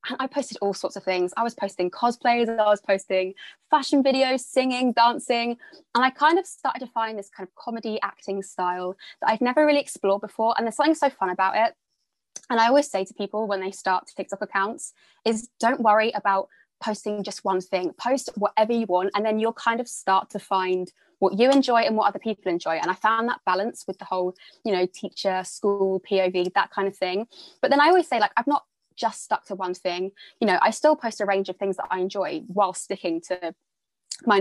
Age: 20-39